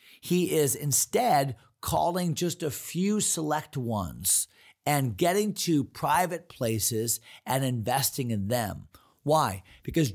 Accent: American